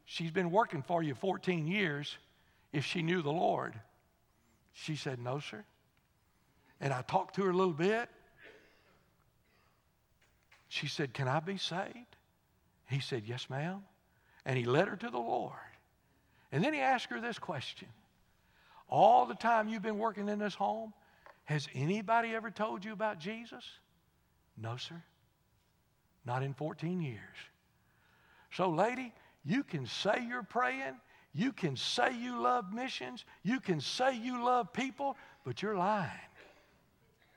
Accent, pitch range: American, 140-210 Hz